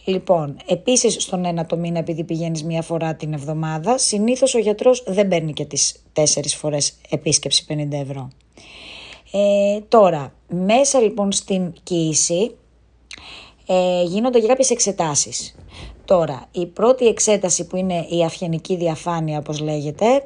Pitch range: 160-205 Hz